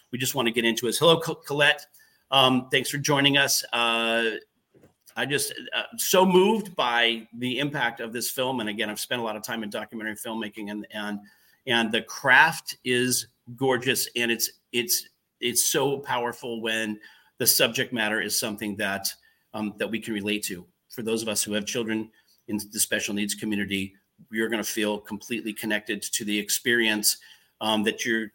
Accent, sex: American, male